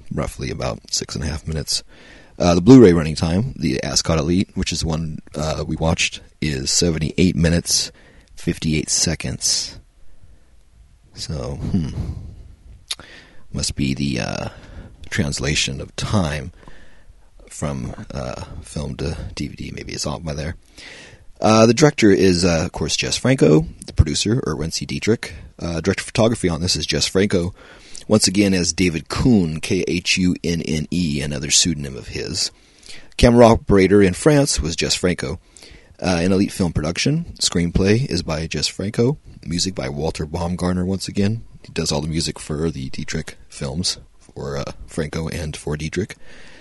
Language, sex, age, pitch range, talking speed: English, male, 30-49, 75-95 Hz, 155 wpm